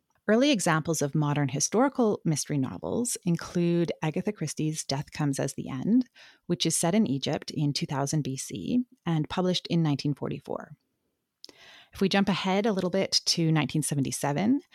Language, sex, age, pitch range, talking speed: English, female, 30-49, 145-180 Hz, 145 wpm